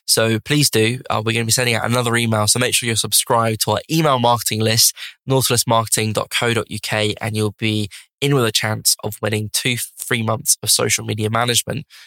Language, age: English, 10-29